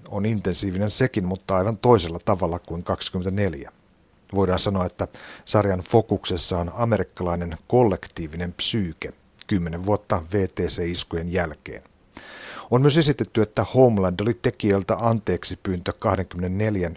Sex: male